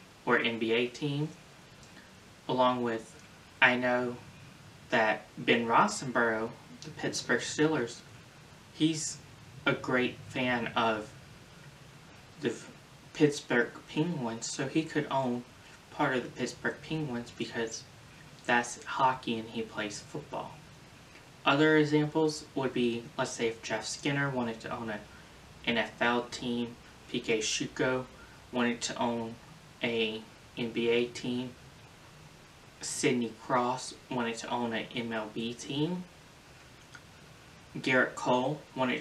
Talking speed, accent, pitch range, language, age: 110 wpm, American, 115-140 Hz, English, 20-39